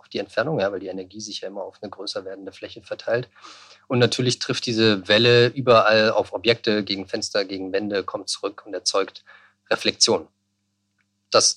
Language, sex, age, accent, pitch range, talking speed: German, male, 40-59, German, 100-115 Hz, 165 wpm